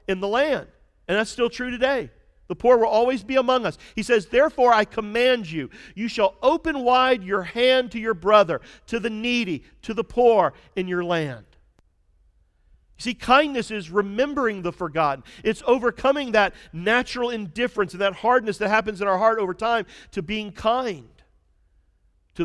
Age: 50-69